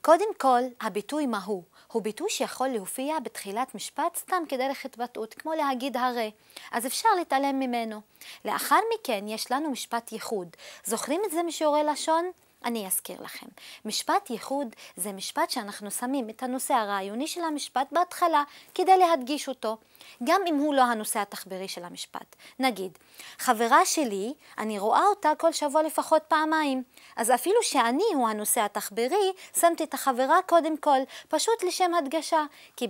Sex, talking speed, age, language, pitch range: female, 150 wpm, 20-39, Hebrew, 230-320 Hz